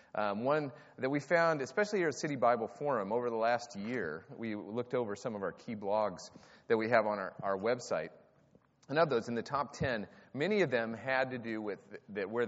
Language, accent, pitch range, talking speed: English, American, 105-140 Hz, 215 wpm